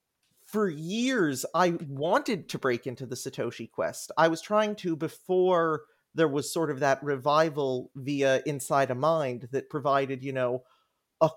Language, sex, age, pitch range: English, male, 30-49, 145-210 Hz